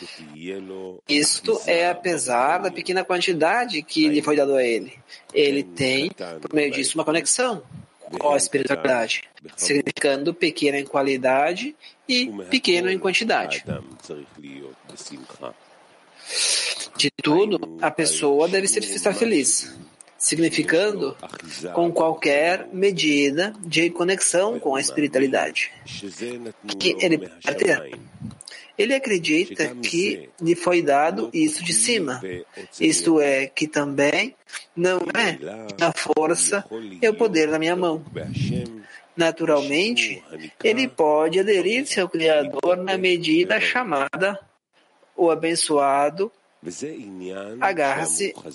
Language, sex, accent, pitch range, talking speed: English, male, Brazilian, 145-195 Hz, 105 wpm